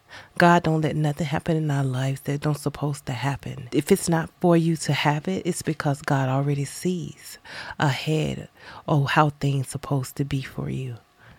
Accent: American